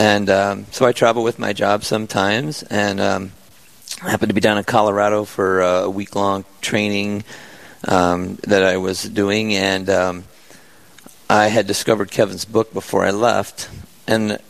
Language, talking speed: English, 160 wpm